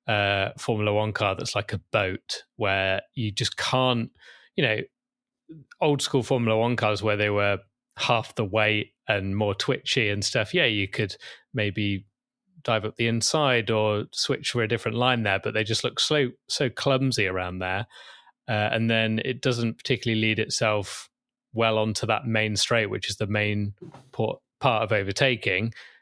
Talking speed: 170 wpm